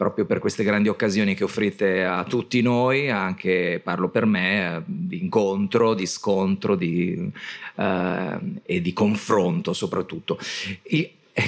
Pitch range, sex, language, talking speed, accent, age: 100-140 Hz, male, Italian, 130 wpm, native, 40-59